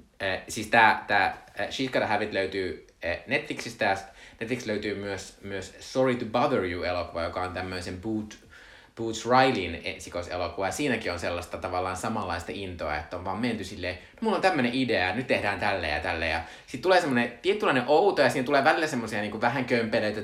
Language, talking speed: Finnish, 175 wpm